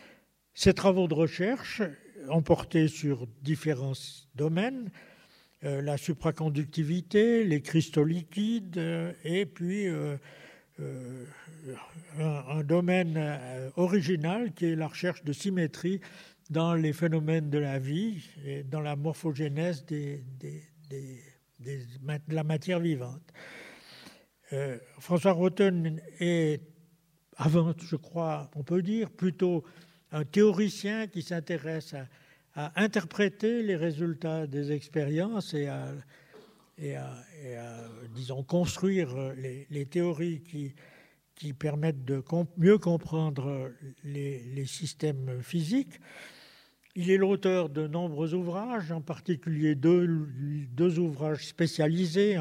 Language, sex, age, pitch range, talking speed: French, male, 60-79, 145-175 Hz, 115 wpm